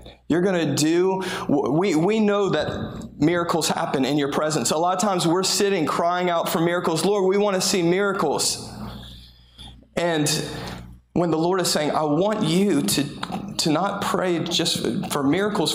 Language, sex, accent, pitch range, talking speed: English, male, American, 130-175 Hz, 170 wpm